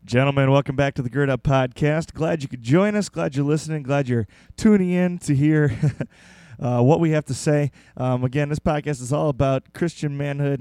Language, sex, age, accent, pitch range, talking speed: English, male, 20-39, American, 125-155 Hz, 210 wpm